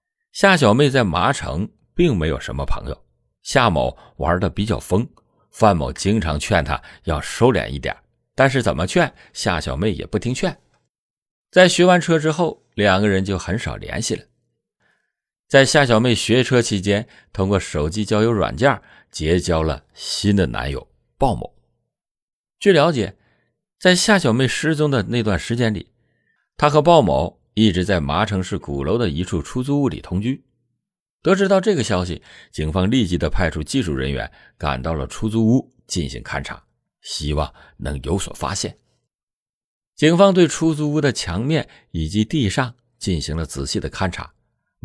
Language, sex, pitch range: Chinese, male, 85-125 Hz